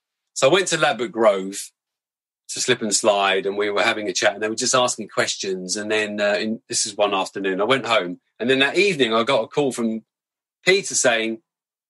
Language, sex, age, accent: English, male, 40-59, British